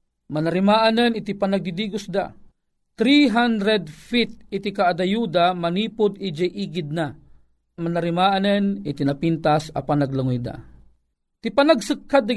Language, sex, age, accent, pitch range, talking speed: Filipino, male, 40-59, native, 165-230 Hz, 105 wpm